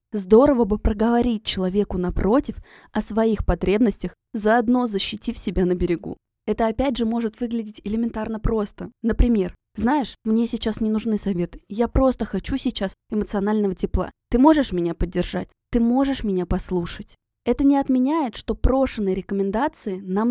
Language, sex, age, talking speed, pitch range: Russian, female, 20-39, 140 wpm, 190-235 Hz